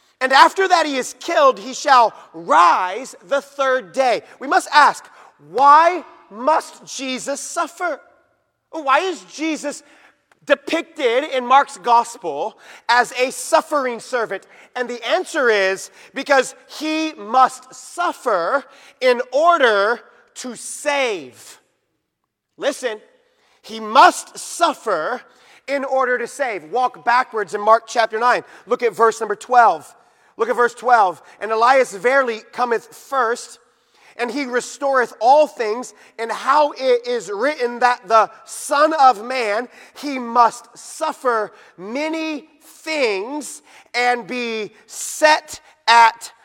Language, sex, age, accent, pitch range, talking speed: English, male, 30-49, American, 235-295 Hz, 120 wpm